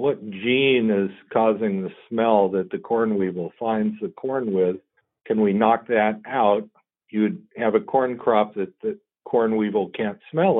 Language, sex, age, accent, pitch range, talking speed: English, male, 60-79, American, 100-140 Hz, 170 wpm